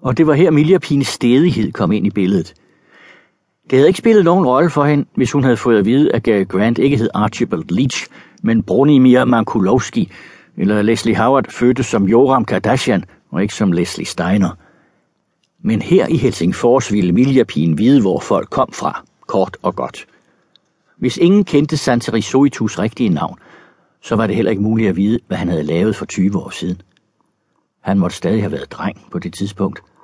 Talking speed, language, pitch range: 185 wpm, Danish, 105-140 Hz